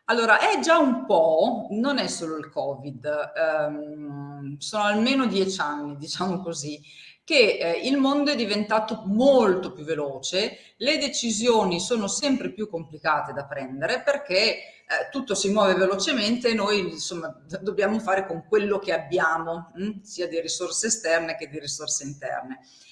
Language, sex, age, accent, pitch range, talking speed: Italian, female, 40-59, native, 160-225 Hz, 150 wpm